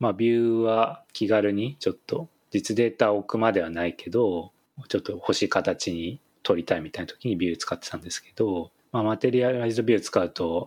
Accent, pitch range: native, 90-120 Hz